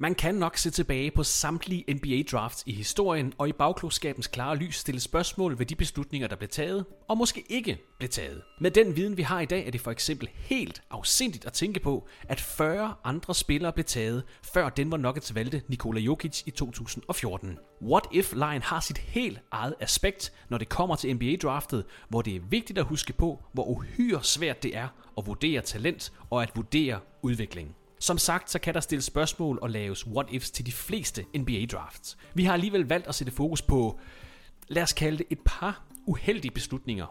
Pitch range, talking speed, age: 120-170 Hz, 190 wpm, 30-49